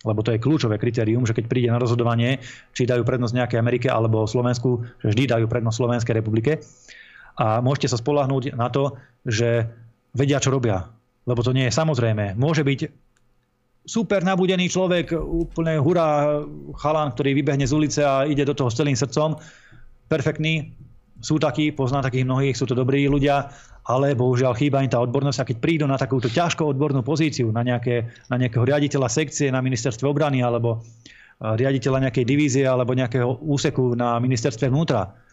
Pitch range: 120-140 Hz